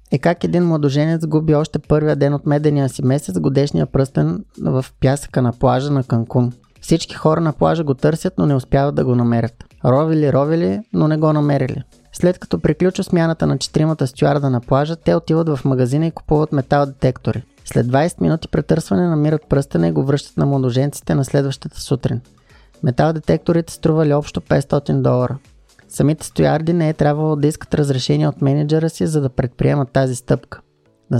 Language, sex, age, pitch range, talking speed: Bulgarian, male, 20-39, 130-155 Hz, 175 wpm